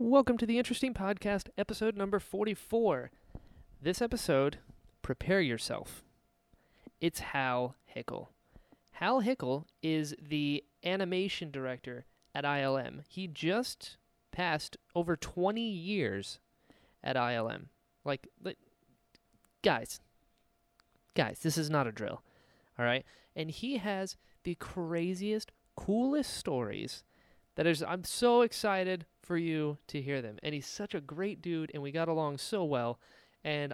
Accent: American